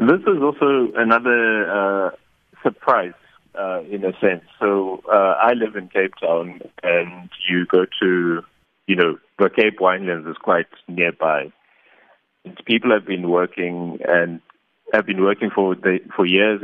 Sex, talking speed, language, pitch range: male, 150 wpm, English, 85-100 Hz